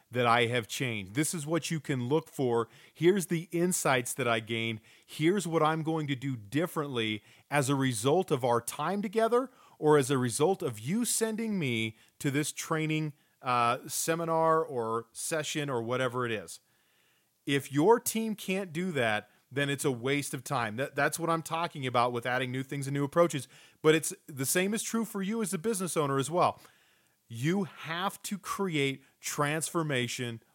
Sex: male